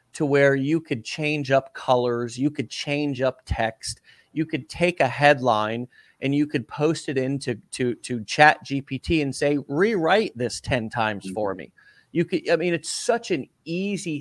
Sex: male